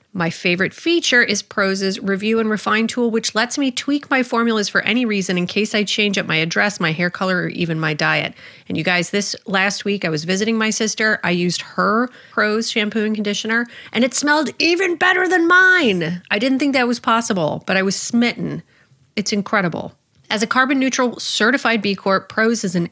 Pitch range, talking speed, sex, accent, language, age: 180-230 Hz, 205 wpm, female, American, English, 30-49